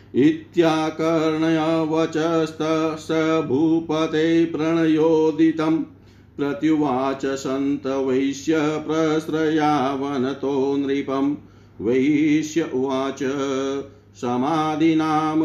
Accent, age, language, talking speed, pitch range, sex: native, 50-69, Hindi, 55 wpm, 140-160 Hz, male